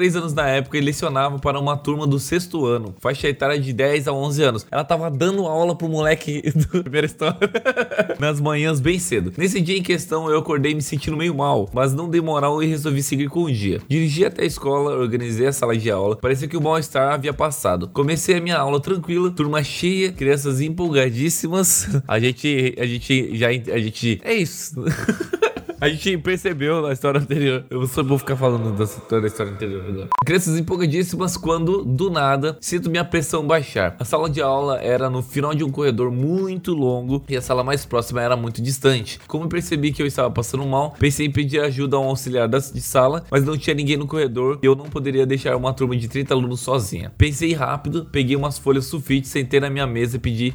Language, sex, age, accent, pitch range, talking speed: Portuguese, male, 20-39, Brazilian, 130-160 Hz, 210 wpm